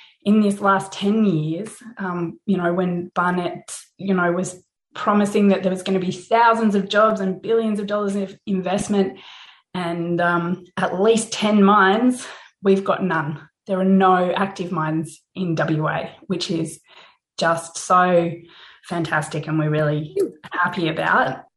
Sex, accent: female, Australian